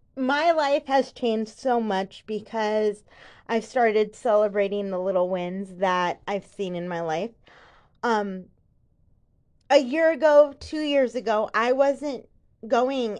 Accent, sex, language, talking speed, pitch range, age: American, female, English, 130 wpm, 200-260 Hz, 20-39